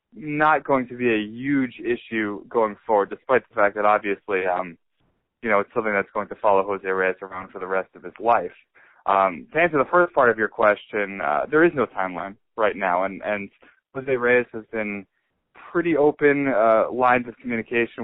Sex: male